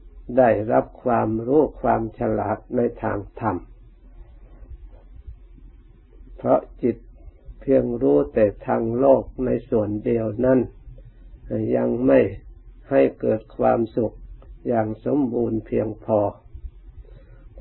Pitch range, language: 105-130 Hz, Thai